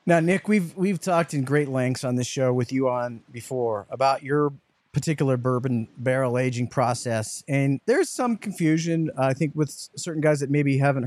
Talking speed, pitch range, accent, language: 190 wpm, 130-165 Hz, American, English